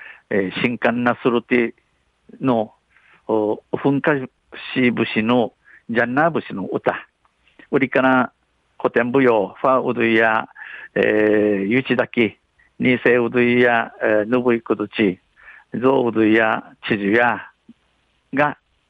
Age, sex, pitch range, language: 50-69, male, 110-145 Hz, Japanese